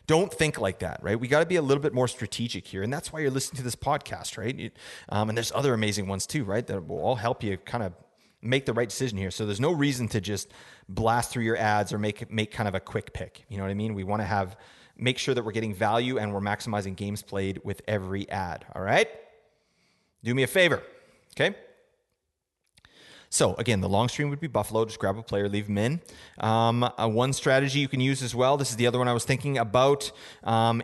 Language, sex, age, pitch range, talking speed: English, male, 30-49, 105-130 Hz, 240 wpm